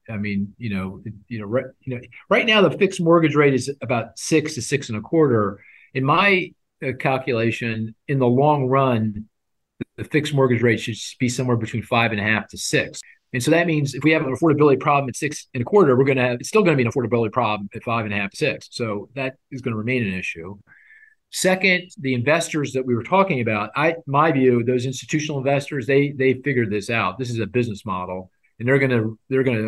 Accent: American